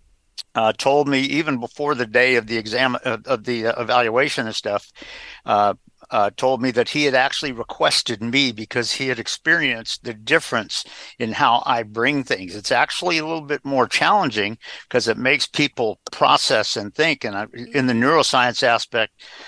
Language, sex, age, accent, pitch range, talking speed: English, male, 50-69, American, 110-140 Hz, 175 wpm